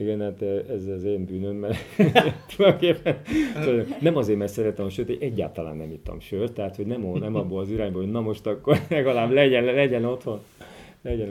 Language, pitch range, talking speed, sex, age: Hungarian, 90-115 Hz, 170 wpm, male, 40-59